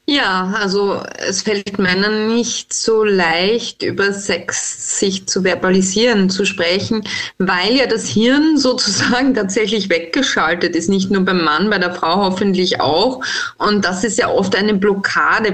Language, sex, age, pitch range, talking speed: German, female, 20-39, 190-230 Hz, 150 wpm